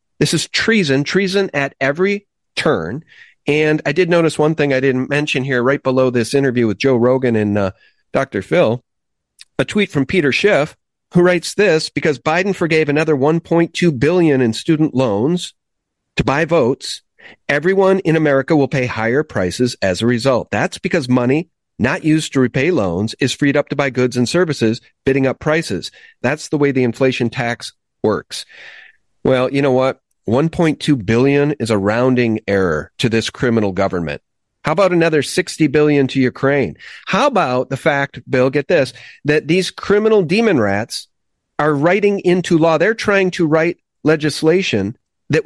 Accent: American